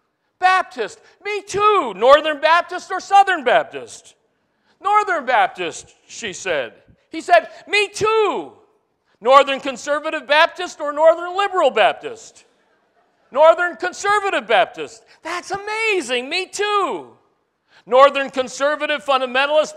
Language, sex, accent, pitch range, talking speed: English, male, American, 270-350 Hz, 100 wpm